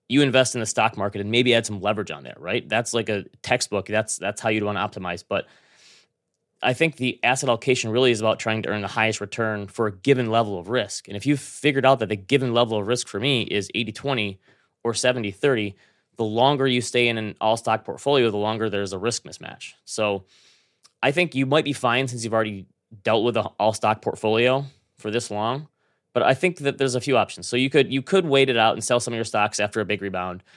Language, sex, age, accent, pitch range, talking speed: English, male, 20-39, American, 100-125 Hz, 240 wpm